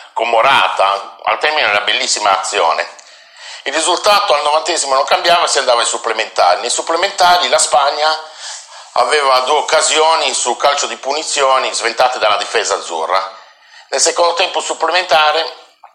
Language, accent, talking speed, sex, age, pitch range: Italian, native, 130 wpm, male, 50-69, 125-165 Hz